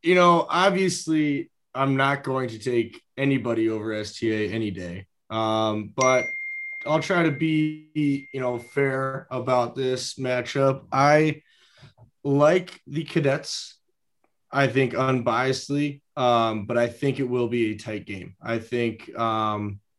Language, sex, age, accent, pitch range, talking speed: English, male, 20-39, American, 115-140 Hz, 135 wpm